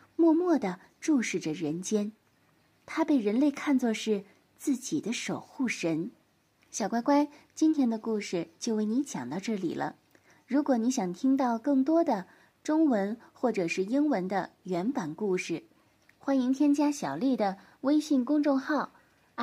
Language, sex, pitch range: Chinese, female, 200-290 Hz